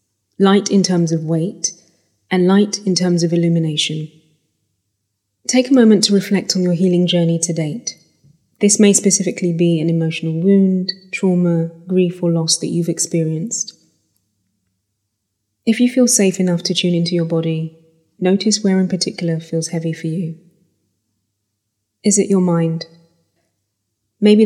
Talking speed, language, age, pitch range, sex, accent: 145 wpm, English, 20-39, 160-185 Hz, female, British